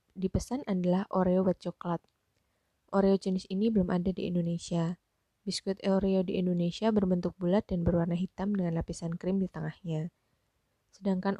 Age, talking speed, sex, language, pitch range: 20-39, 140 wpm, female, Indonesian, 170-195 Hz